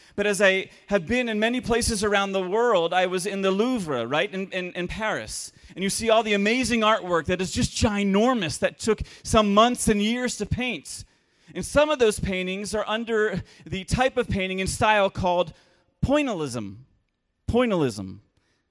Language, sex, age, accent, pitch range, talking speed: English, male, 30-49, American, 185-230 Hz, 180 wpm